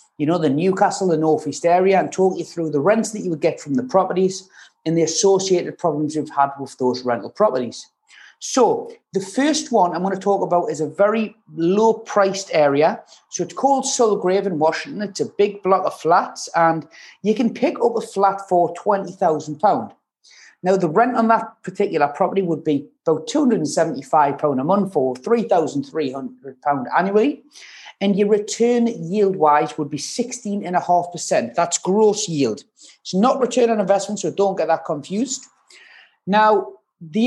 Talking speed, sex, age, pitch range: 165 wpm, male, 30-49, 165-215 Hz